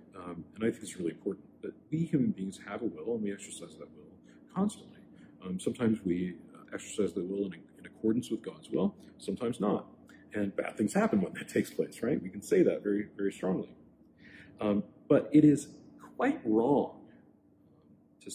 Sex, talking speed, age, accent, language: male, 190 wpm, 40-59, American, English